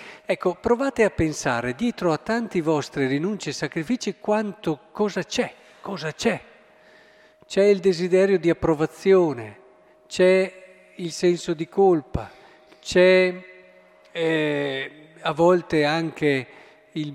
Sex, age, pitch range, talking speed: male, 50-69, 140-185 Hz, 105 wpm